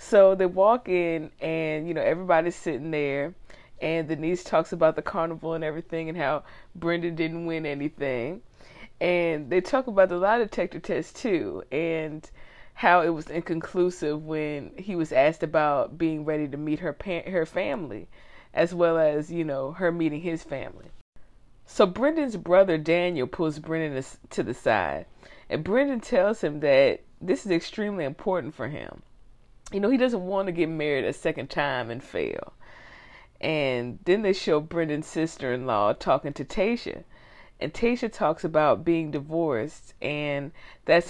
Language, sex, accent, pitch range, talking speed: English, female, American, 150-180 Hz, 160 wpm